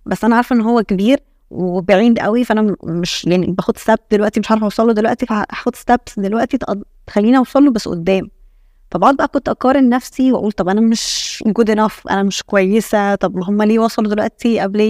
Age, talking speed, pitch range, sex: 20-39, 185 wpm, 195-235 Hz, female